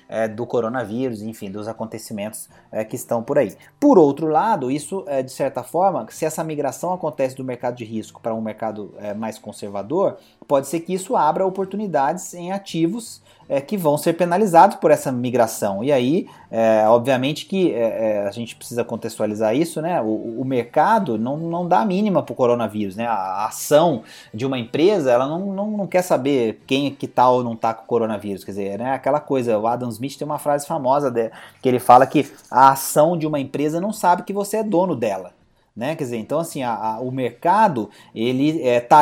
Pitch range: 120-150 Hz